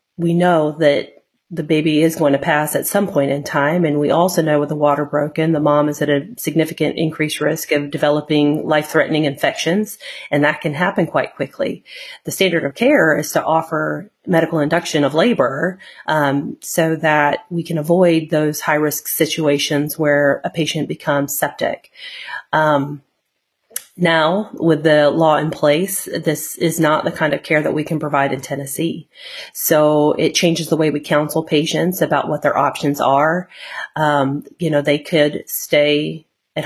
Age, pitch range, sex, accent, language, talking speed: 30-49, 145-165 Hz, female, American, English, 170 wpm